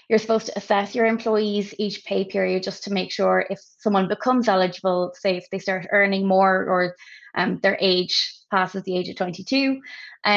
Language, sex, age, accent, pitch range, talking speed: English, female, 20-39, Irish, 185-210 Hz, 185 wpm